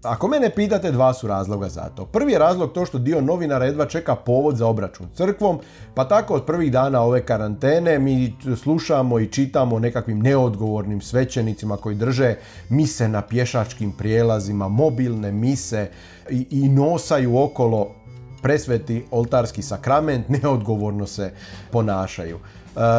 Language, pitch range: Croatian, 115-135 Hz